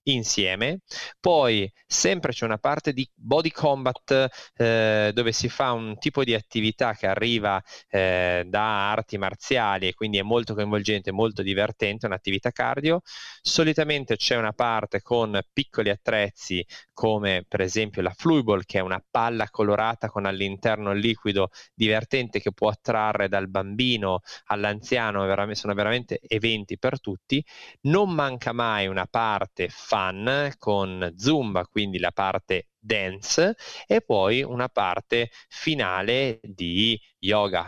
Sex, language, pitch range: male, Italian, 95-120 Hz